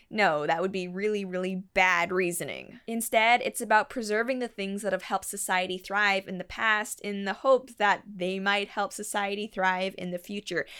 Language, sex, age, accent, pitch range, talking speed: English, female, 10-29, American, 195-240 Hz, 190 wpm